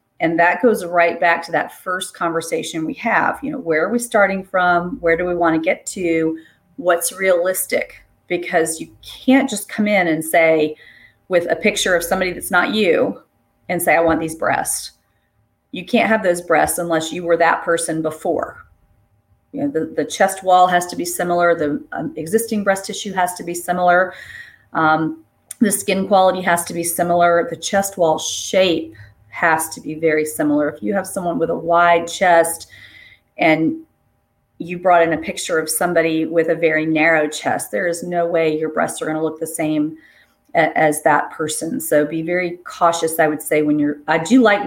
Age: 40-59